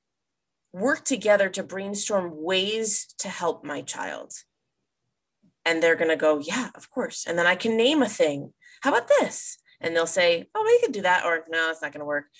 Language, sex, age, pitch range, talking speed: English, female, 30-49, 160-225 Hz, 205 wpm